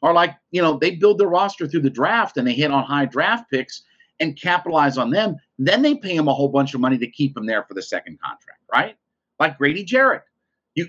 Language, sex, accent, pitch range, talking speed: English, male, American, 130-175 Hz, 240 wpm